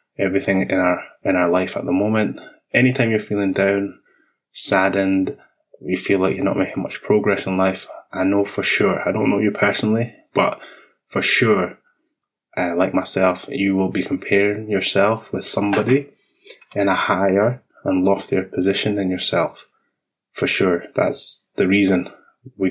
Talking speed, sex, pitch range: 160 wpm, male, 95-110 Hz